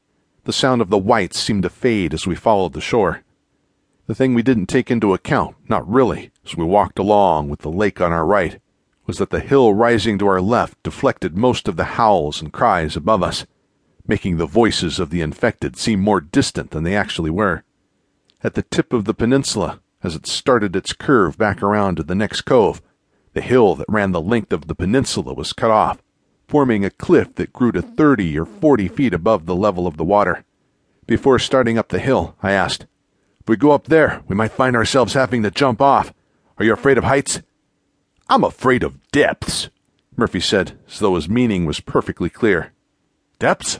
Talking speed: 200 wpm